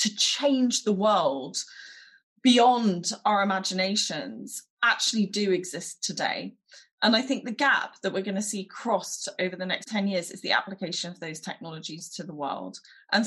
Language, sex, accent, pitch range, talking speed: English, female, British, 185-240 Hz, 165 wpm